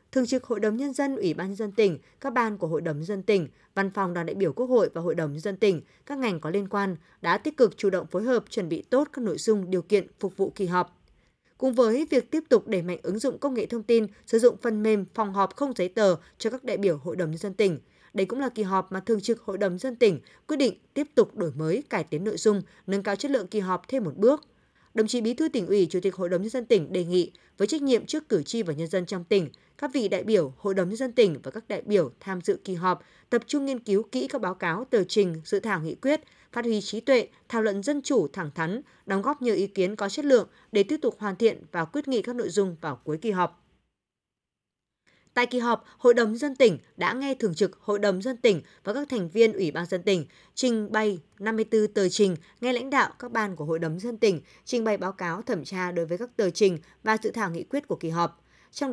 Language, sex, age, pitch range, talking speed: Vietnamese, female, 20-39, 180-240 Hz, 270 wpm